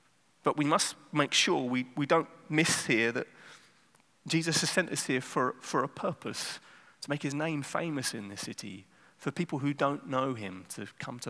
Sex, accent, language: male, British, English